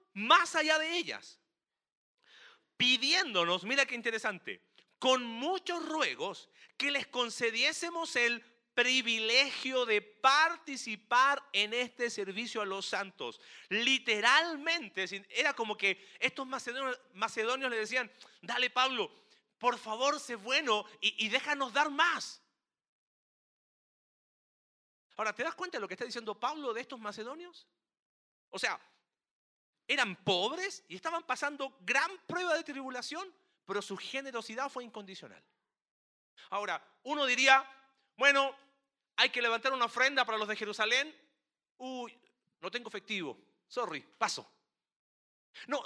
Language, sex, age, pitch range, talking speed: Spanish, male, 40-59, 225-290 Hz, 120 wpm